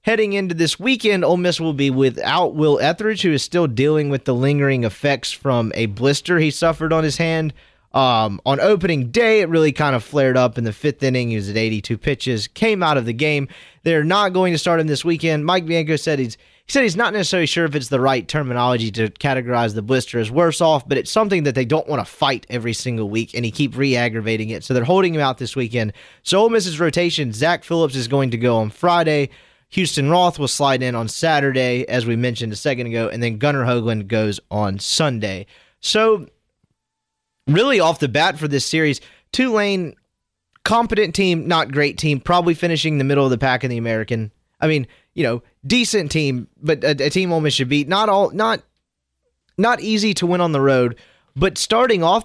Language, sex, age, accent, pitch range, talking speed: English, male, 30-49, American, 125-170 Hz, 215 wpm